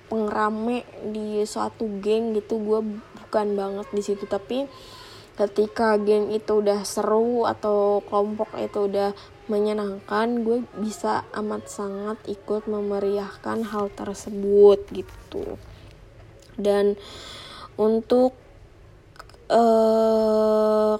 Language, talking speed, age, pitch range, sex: Indonesian, 95 wpm, 20-39, 185-215 Hz, female